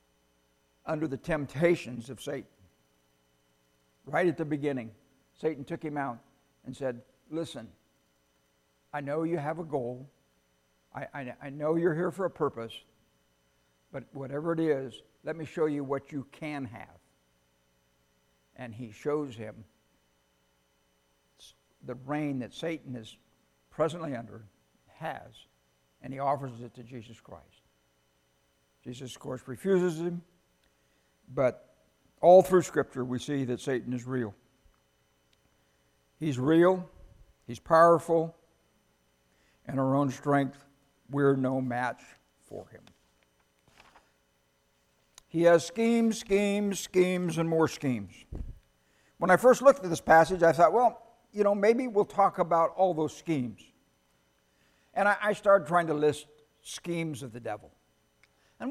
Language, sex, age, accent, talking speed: English, male, 60-79, American, 130 wpm